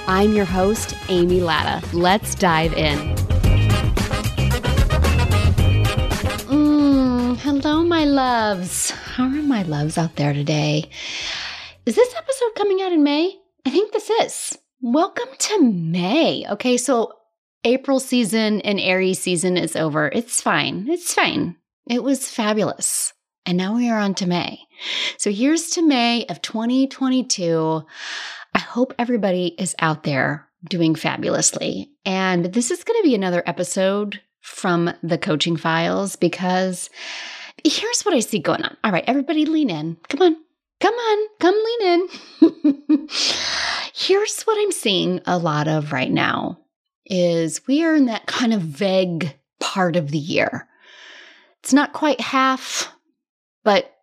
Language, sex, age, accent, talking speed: English, female, 30-49, American, 140 wpm